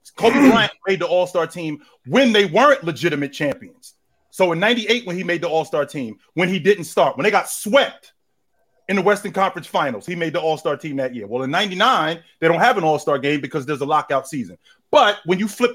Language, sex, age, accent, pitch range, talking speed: English, male, 30-49, American, 175-255 Hz, 220 wpm